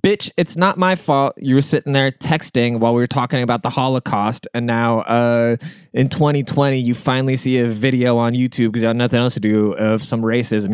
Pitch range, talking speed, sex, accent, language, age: 120-155 Hz, 220 wpm, male, American, English, 20-39